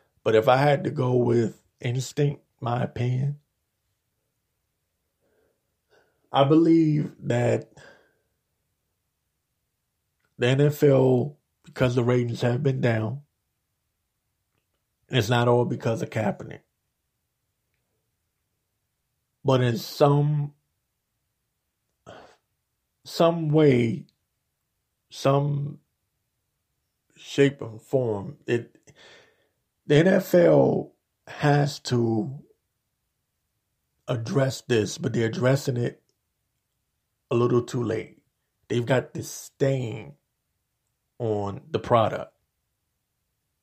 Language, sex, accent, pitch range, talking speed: English, male, American, 115-145 Hz, 80 wpm